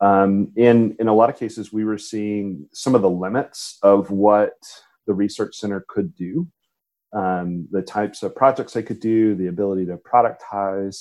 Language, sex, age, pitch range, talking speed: English, male, 30-49, 95-110 Hz, 180 wpm